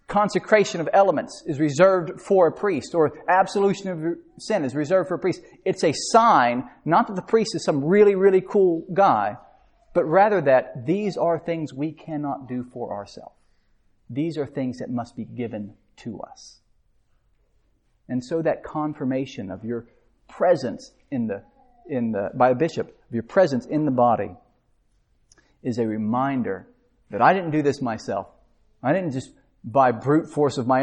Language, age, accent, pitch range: English, 40-59, American, 125-205 Hz